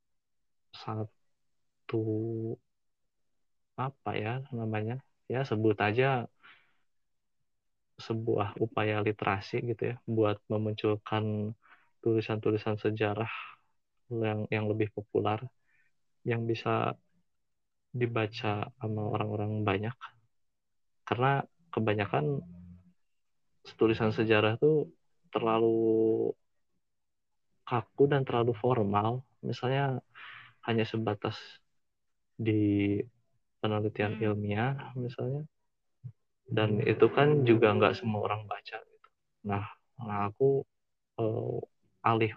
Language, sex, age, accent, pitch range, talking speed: Indonesian, male, 20-39, native, 105-120 Hz, 80 wpm